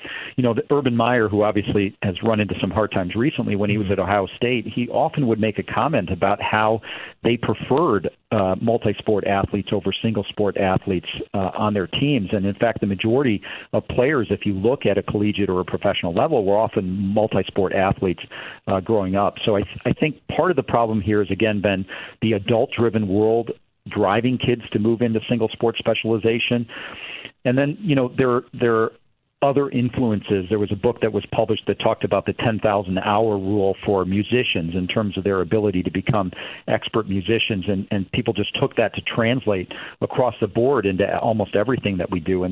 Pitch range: 100-115 Hz